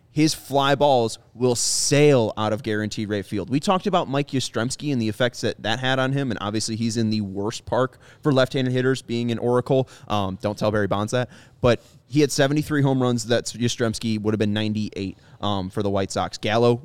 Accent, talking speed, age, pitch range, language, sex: American, 215 wpm, 20-39, 110-140 Hz, English, male